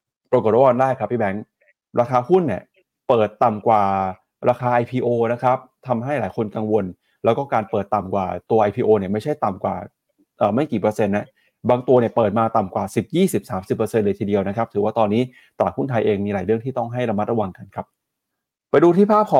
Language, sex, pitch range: Thai, male, 110-135 Hz